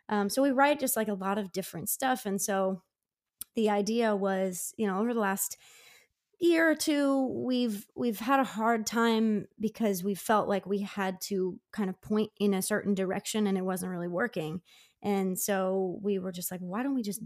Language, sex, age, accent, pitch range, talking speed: English, female, 20-39, American, 190-230 Hz, 205 wpm